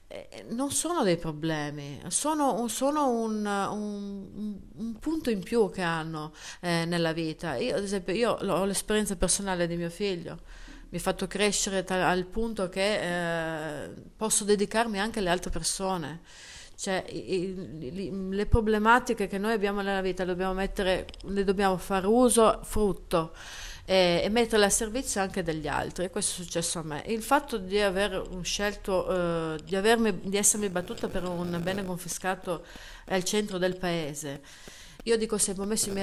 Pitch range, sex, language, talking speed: 175-215 Hz, female, Italian, 165 wpm